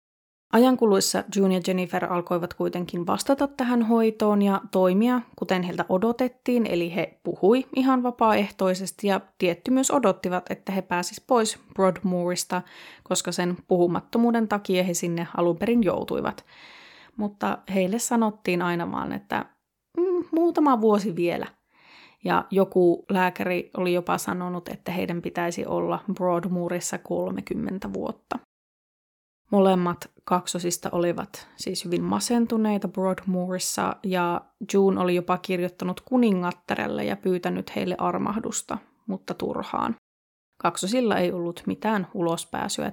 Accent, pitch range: native, 180-220 Hz